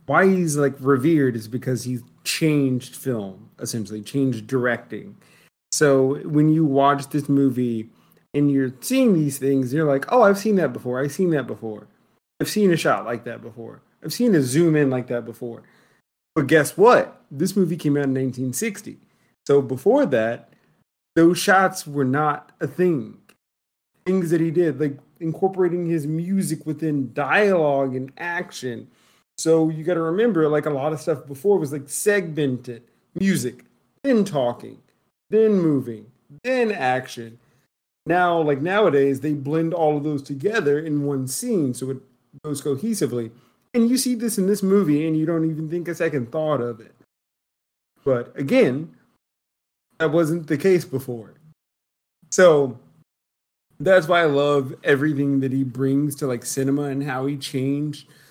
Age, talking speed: 30-49, 160 wpm